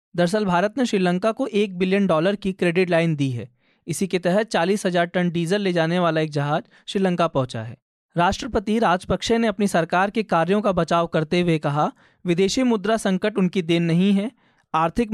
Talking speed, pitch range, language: 185 wpm, 165-210 Hz, Hindi